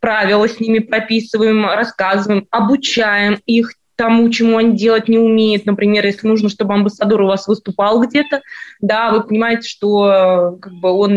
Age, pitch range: 20-39, 200-230 Hz